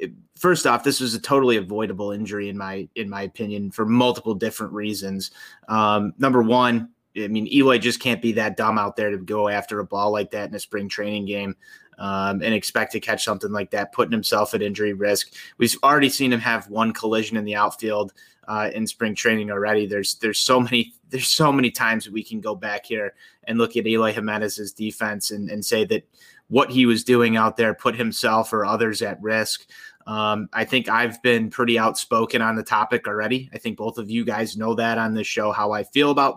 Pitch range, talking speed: 105-125 Hz, 220 wpm